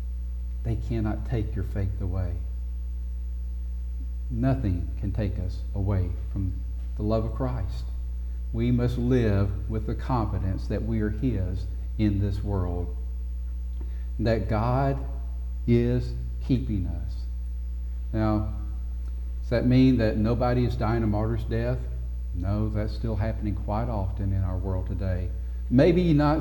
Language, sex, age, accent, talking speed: English, male, 50-69, American, 130 wpm